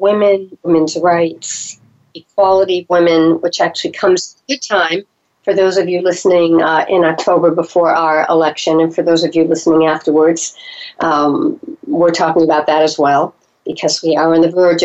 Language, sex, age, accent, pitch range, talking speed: English, female, 60-79, American, 160-195 Hz, 180 wpm